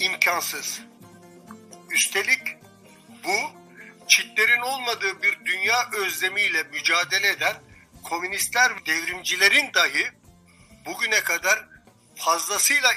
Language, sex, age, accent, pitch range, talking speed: Turkish, male, 60-79, native, 185-250 Hz, 75 wpm